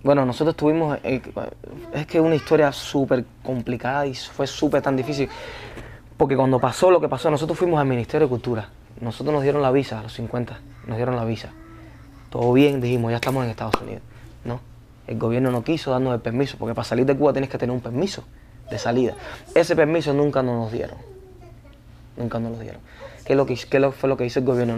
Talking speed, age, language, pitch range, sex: 200 wpm, 20-39, English, 120-140 Hz, male